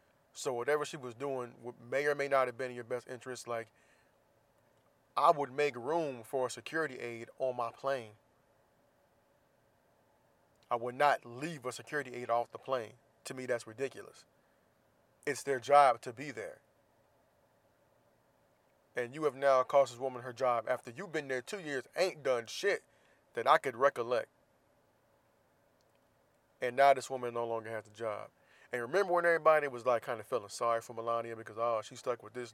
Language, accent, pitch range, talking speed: English, American, 120-140 Hz, 175 wpm